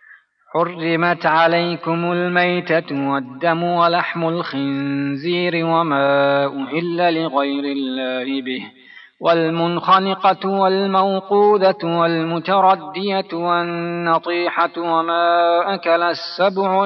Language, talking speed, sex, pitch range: Persian, 65 wpm, male, 145-185 Hz